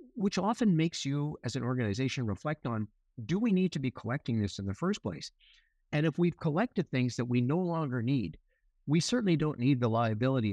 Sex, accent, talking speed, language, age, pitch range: male, American, 205 wpm, English, 50-69, 105-135 Hz